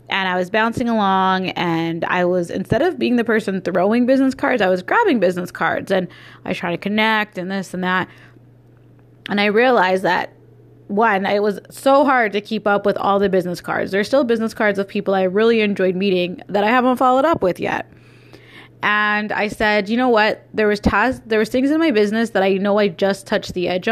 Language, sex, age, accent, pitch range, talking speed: English, female, 20-39, American, 190-230 Hz, 220 wpm